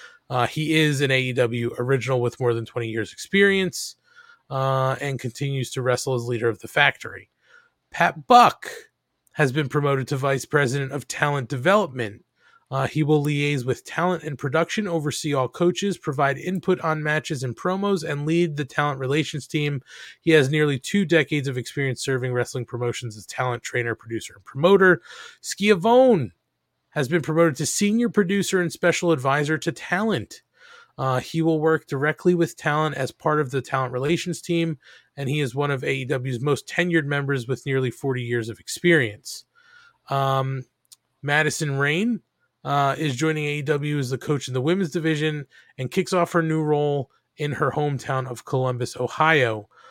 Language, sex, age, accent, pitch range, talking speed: English, male, 30-49, American, 130-170 Hz, 165 wpm